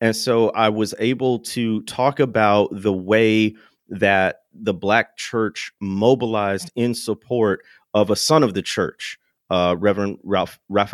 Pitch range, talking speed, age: 105-125 Hz, 145 wpm, 30-49